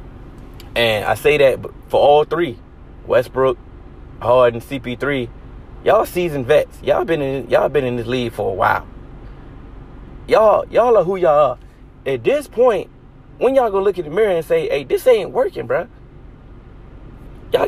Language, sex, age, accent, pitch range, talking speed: English, male, 20-39, American, 115-140 Hz, 155 wpm